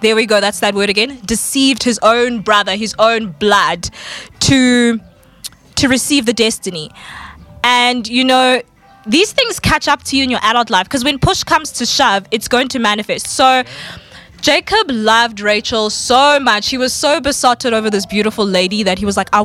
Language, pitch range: English, 210-265 Hz